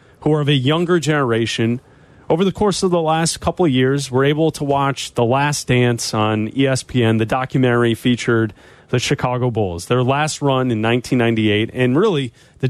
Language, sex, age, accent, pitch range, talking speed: English, male, 30-49, American, 125-170 Hz, 180 wpm